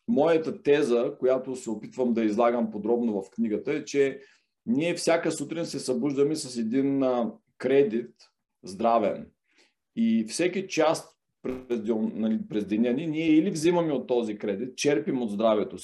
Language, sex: Bulgarian, male